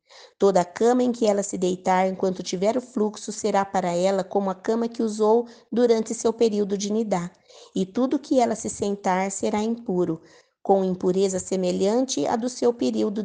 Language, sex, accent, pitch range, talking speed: Portuguese, female, Brazilian, 185-225 Hz, 180 wpm